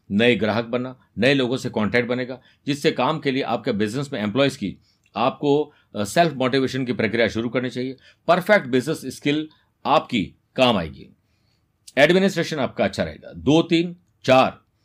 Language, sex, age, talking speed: Hindi, male, 50-69, 155 wpm